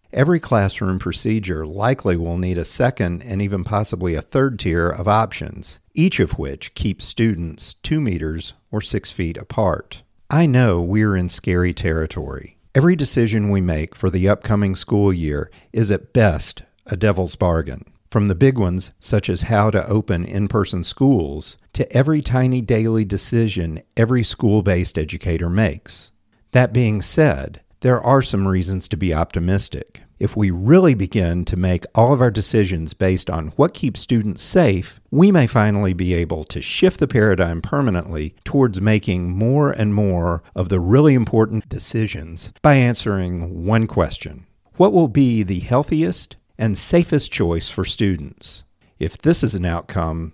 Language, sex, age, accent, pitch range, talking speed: English, male, 50-69, American, 85-115 Hz, 160 wpm